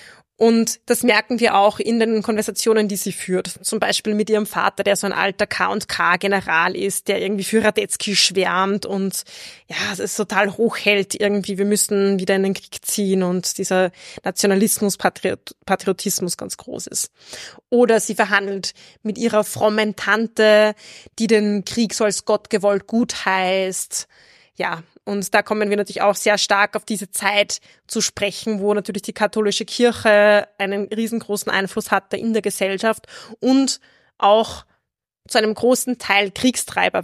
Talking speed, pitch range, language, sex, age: 155 wpm, 200-225 Hz, German, female, 20-39